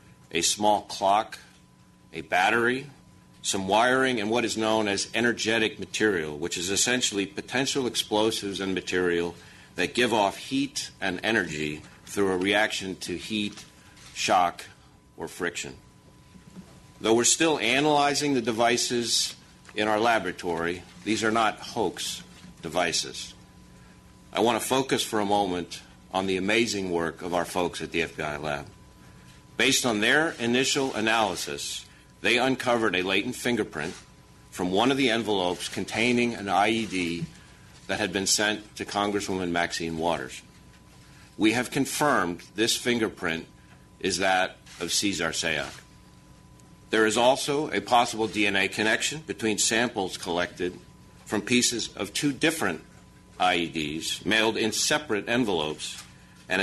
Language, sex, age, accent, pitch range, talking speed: English, male, 50-69, American, 85-115 Hz, 130 wpm